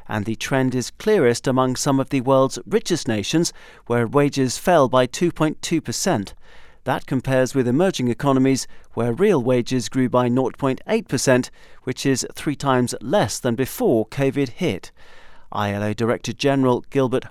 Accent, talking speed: British, 145 wpm